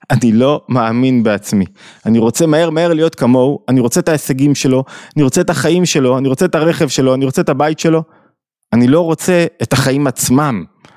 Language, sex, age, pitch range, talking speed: Hebrew, male, 20-39, 120-160 Hz, 195 wpm